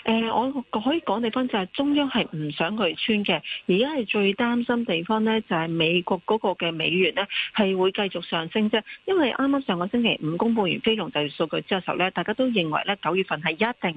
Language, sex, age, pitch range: Chinese, female, 40-59, 170-225 Hz